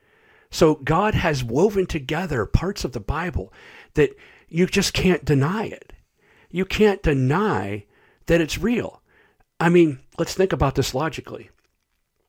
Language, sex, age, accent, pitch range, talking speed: English, male, 50-69, American, 115-170 Hz, 135 wpm